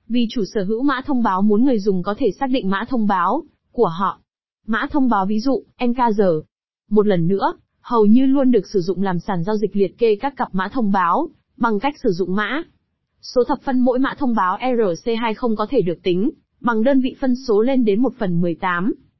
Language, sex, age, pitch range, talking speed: Vietnamese, female, 20-39, 195-255 Hz, 225 wpm